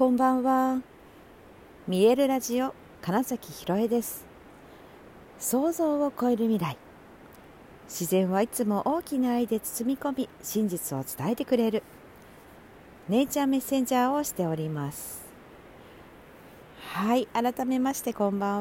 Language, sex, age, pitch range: Japanese, female, 50-69, 160-240 Hz